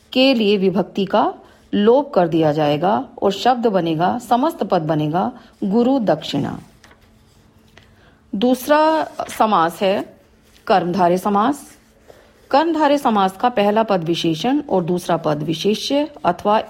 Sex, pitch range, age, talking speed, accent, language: female, 175-260 Hz, 40-59, 115 wpm, native, Hindi